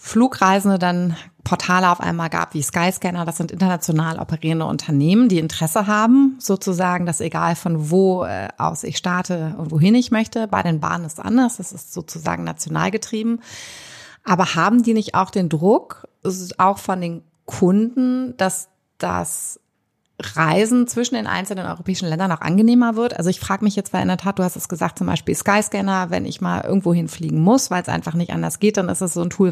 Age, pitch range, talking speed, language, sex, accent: 30-49, 170-220 Hz, 195 wpm, German, female, German